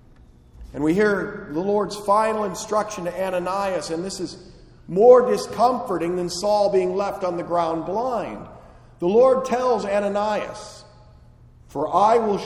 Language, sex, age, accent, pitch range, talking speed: English, male, 50-69, American, 125-200 Hz, 140 wpm